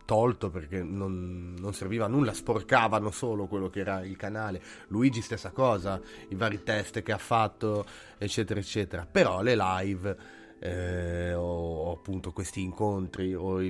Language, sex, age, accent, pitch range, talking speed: Italian, male, 30-49, native, 90-110 Hz, 160 wpm